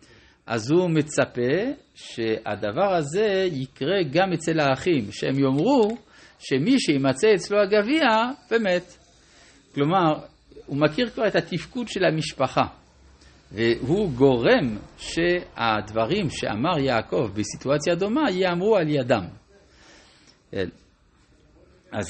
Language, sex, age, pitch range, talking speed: Hebrew, male, 60-79, 125-195 Hz, 95 wpm